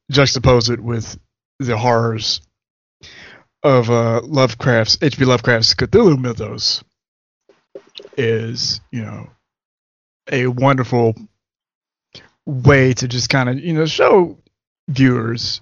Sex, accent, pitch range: male, American, 115-130 Hz